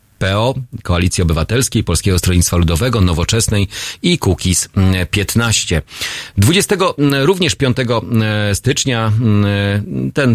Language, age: Polish, 40-59